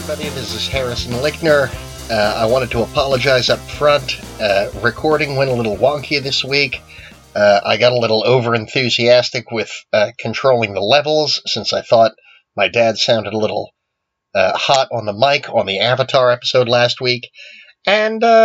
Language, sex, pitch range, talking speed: English, male, 115-150 Hz, 165 wpm